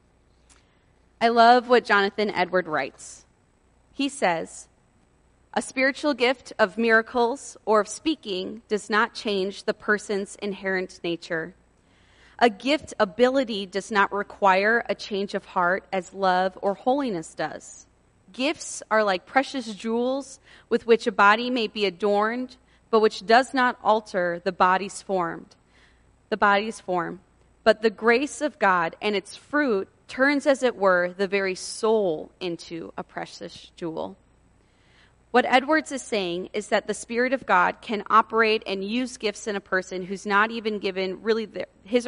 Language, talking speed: English, 150 wpm